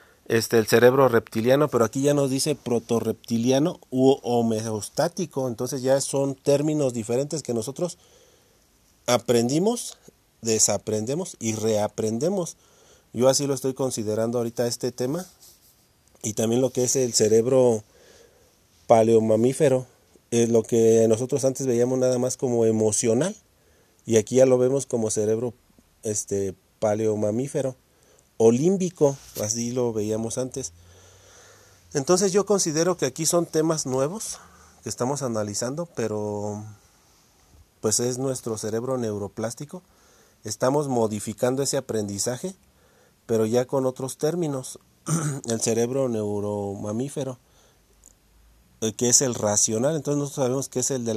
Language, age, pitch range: Spanish, 40-59, 110-135 Hz